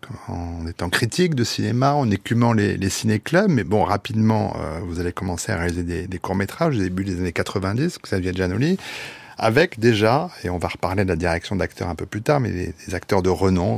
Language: French